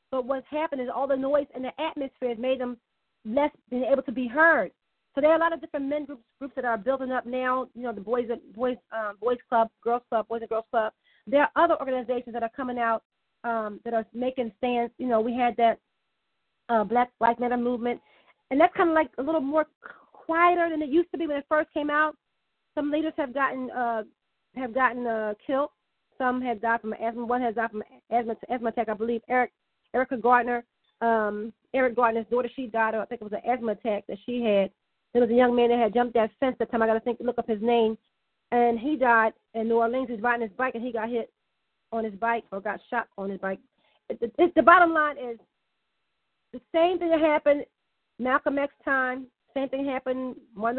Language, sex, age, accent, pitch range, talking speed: English, female, 40-59, American, 230-275 Hz, 230 wpm